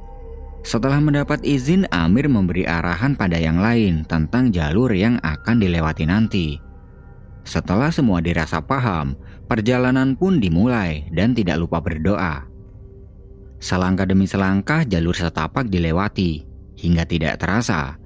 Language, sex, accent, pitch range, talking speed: Indonesian, male, native, 80-115 Hz, 115 wpm